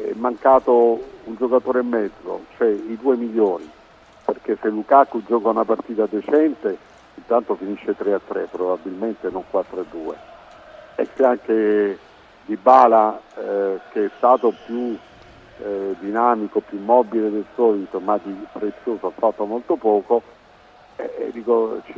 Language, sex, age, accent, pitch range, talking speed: Italian, male, 50-69, native, 105-130 Hz, 130 wpm